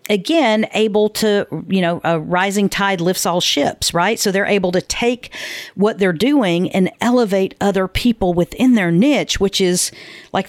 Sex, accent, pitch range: female, American, 165-210 Hz